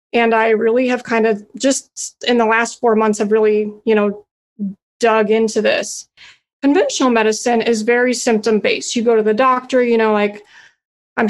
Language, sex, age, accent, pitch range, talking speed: English, female, 30-49, American, 215-250 Hz, 180 wpm